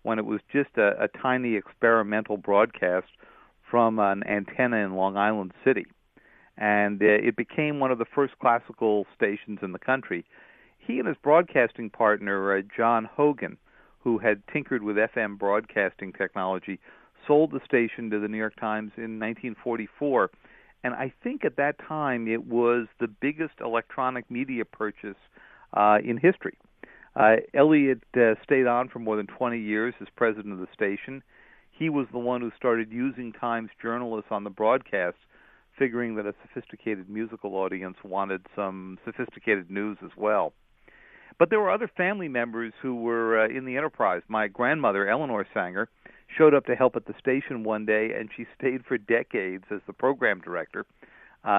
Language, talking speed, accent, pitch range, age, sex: English, 165 wpm, American, 105-125 Hz, 50-69, male